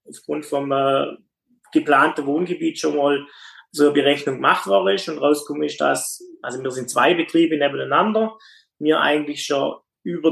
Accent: German